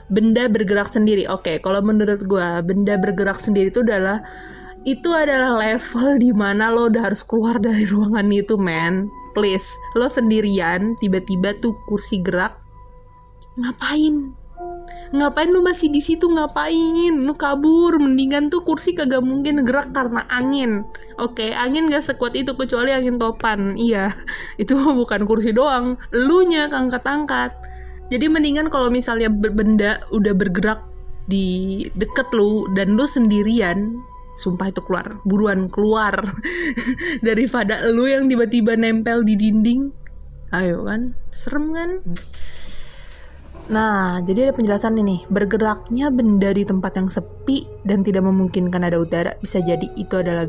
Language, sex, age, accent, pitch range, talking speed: Indonesian, female, 20-39, native, 195-255 Hz, 140 wpm